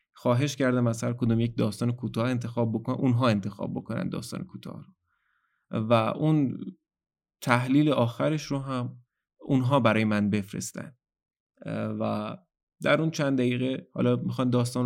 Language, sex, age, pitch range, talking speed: Persian, male, 20-39, 115-135 Hz, 135 wpm